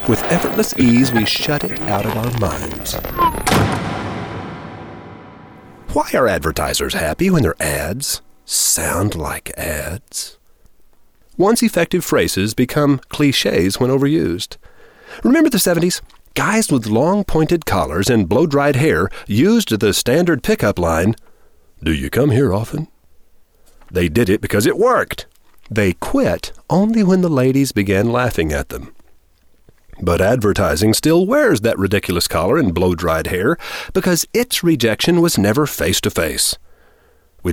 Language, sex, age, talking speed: English, male, 40-59, 130 wpm